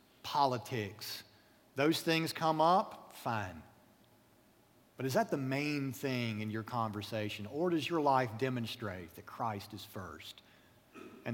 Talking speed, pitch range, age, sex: 130 wpm, 120-160 Hz, 40-59, male